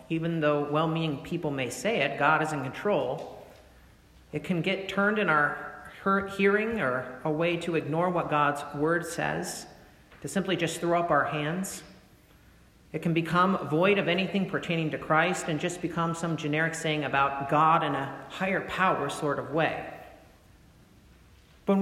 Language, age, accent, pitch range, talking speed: English, 40-59, American, 140-180 Hz, 160 wpm